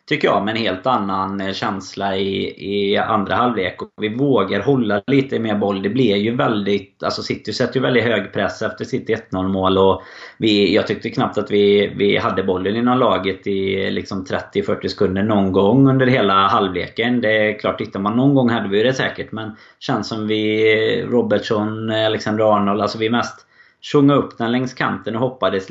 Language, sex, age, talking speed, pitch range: Swedish, male, 20-39, 195 wpm, 100-120 Hz